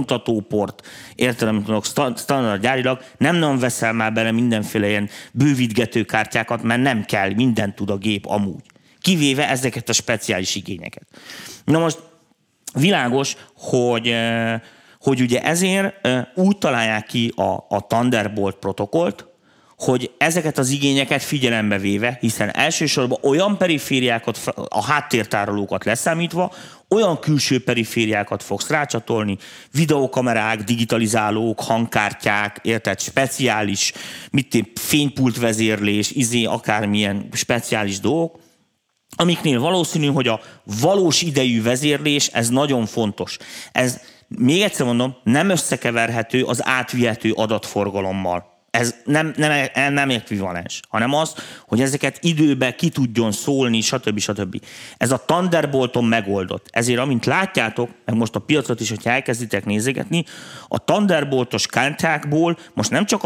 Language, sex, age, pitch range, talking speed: Hungarian, male, 30-49, 110-140 Hz, 120 wpm